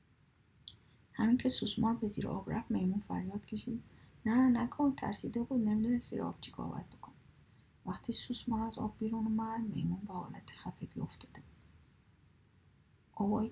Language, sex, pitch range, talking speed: Persian, female, 180-225 Hz, 140 wpm